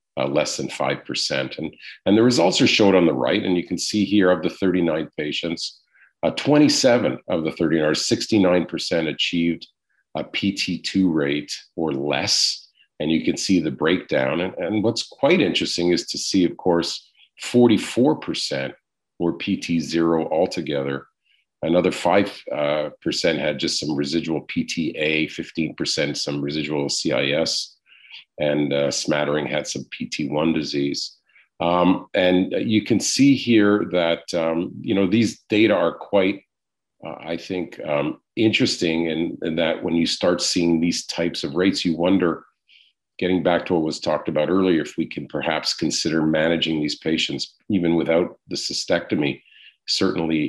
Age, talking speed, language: 50-69, 155 wpm, English